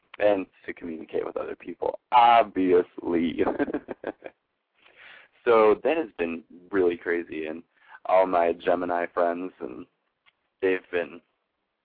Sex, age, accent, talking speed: male, 20-39, American, 105 wpm